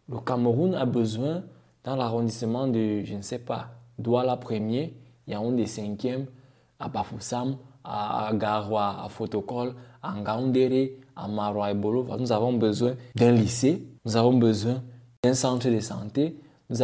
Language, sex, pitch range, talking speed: French, male, 120-150 Hz, 165 wpm